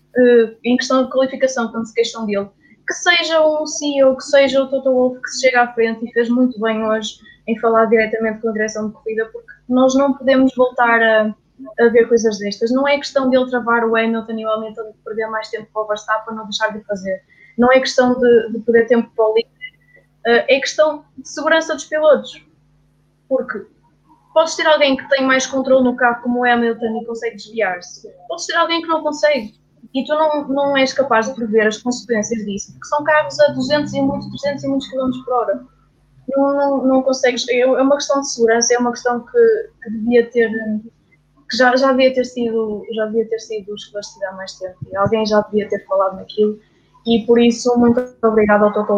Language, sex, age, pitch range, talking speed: English, female, 20-39, 220-265 Hz, 210 wpm